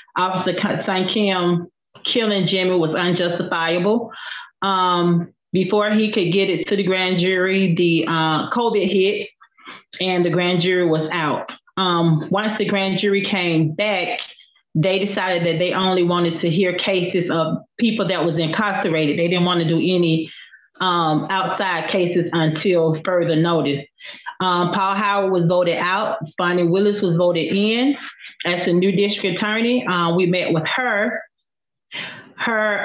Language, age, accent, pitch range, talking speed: English, 30-49, American, 170-195 Hz, 150 wpm